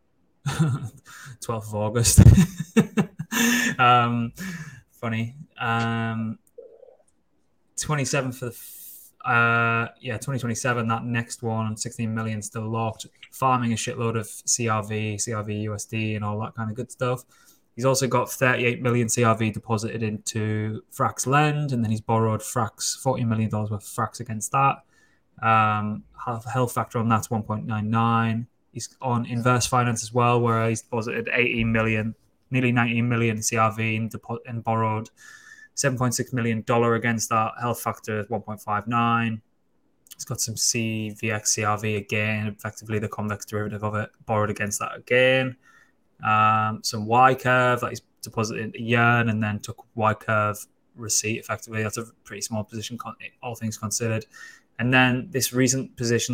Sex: male